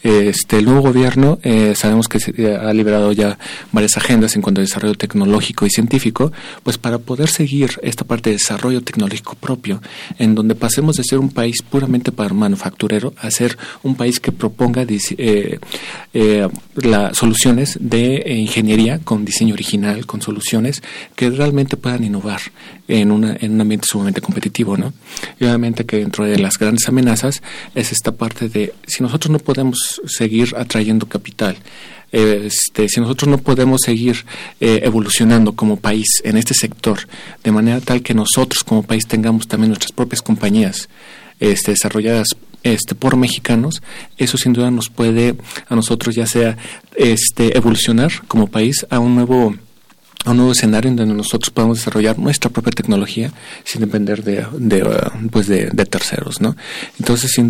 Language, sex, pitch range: Spanish, male, 110-125 Hz